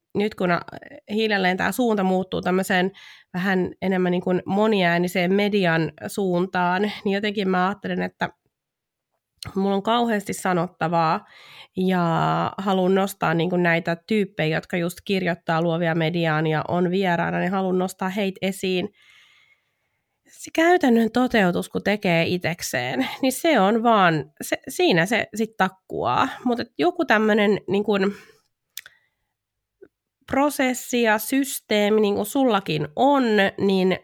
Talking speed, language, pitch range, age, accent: 120 wpm, Finnish, 180-220 Hz, 20-39, native